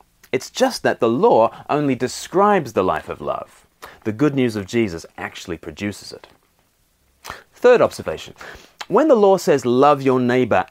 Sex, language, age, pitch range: male, English, 30-49, 110-175 Hz